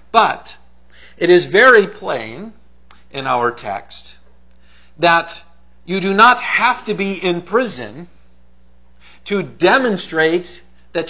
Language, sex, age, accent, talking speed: English, male, 50-69, American, 110 wpm